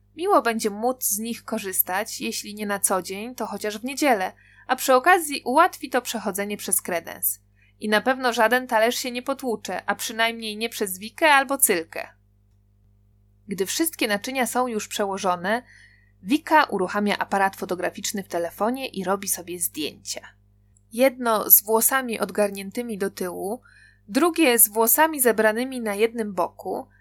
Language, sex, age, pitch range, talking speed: Polish, female, 20-39, 180-250 Hz, 150 wpm